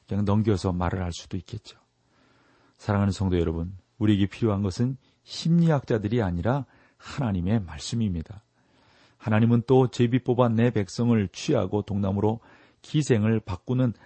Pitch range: 95-120 Hz